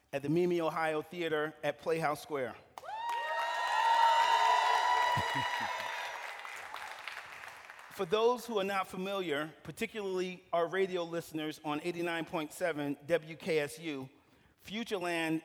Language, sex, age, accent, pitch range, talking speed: English, male, 40-59, American, 155-195 Hz, 85 wpm